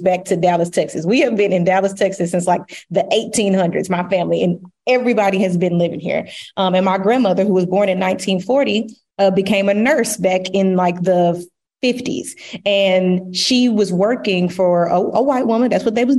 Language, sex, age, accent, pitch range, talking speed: English, female, 20-39, American, 185-230 Hz, 195 wpm